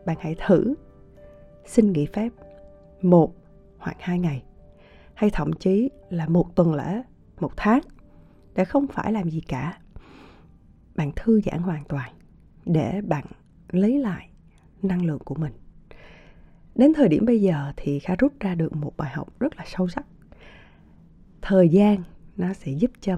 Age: 20-39